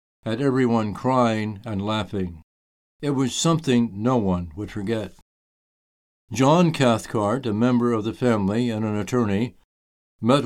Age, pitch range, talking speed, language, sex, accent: 60-79, 95-135 Hz, 130 wpm, English, male, American